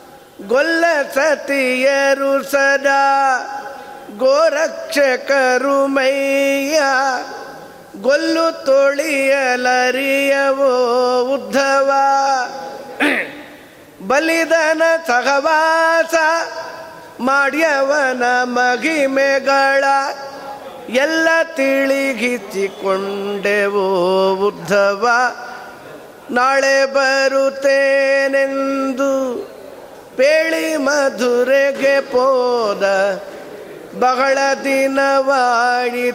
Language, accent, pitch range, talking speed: Kannada, native, 250-275 Hz, 35 wpm